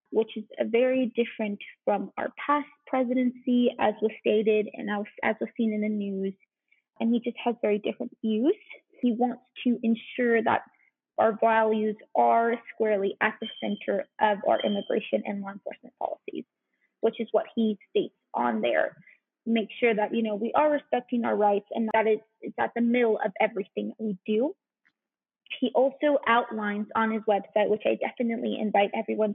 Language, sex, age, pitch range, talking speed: English, female, 20-39, 215-250 Hz, 170 wpm